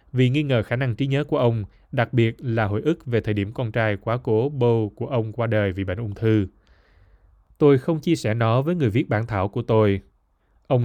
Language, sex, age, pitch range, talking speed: Vietnamese, male, 20-39, 105-135 Hz, 240 wpm